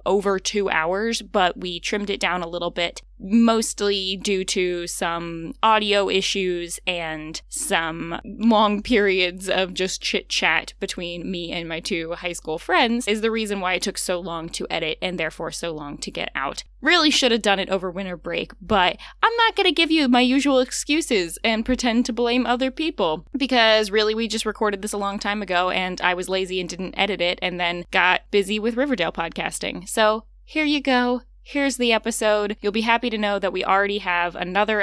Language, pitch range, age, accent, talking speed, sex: English, 180-235 Hz, 10-29, American, 200 wpm, female